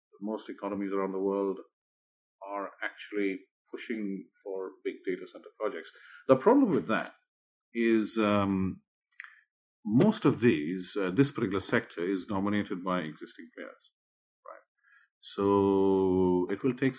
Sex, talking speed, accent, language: male, 125 wpm, Indian, English